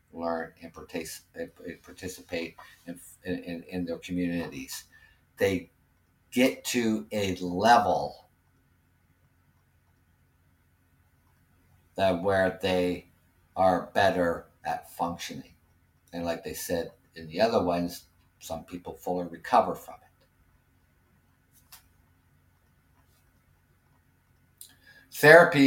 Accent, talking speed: American, 80 wpm